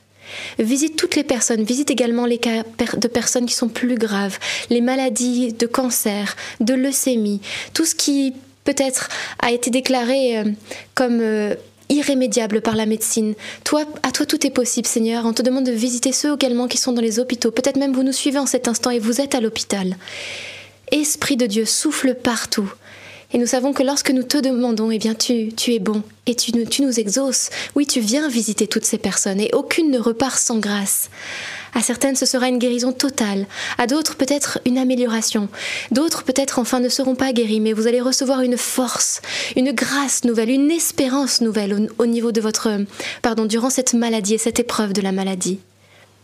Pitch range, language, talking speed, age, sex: 225-265 Hz, French, 190 wpm, 20-39, female